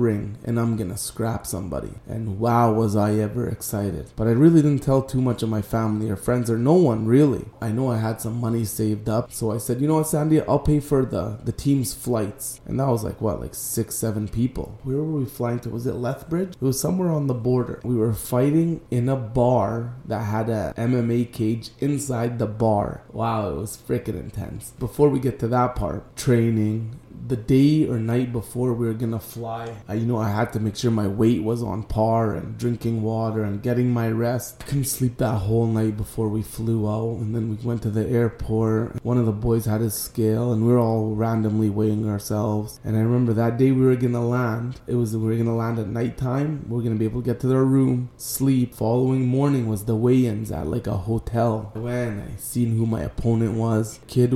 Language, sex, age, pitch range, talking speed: English, male, 20-39, 110-125 Hz, 230 wpm